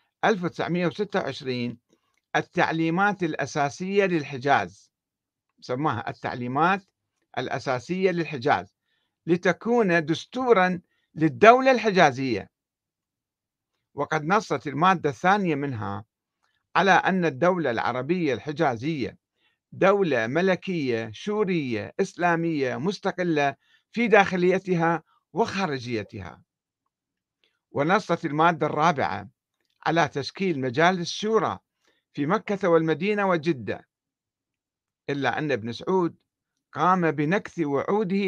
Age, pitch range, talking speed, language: 50-69, 140-190 Hz, 75 wpm, Arabic